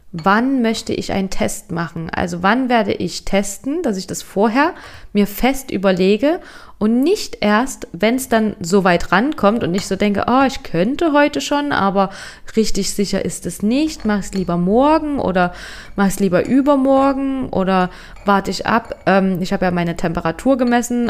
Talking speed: 175 wpm